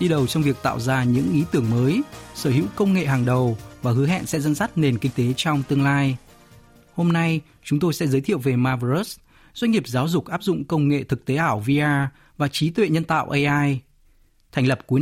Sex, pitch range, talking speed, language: male, 130-170 Hz, 230 wpm, Vietnamese